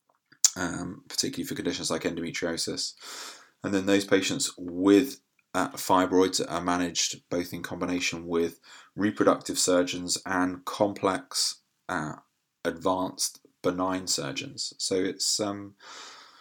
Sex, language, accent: male, English, British